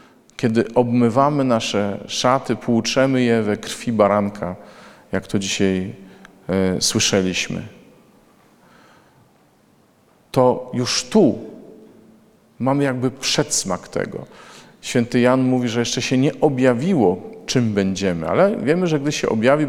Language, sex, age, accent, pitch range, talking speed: Polish, male, 40-59, native, 105-140 Hz, 110 wpm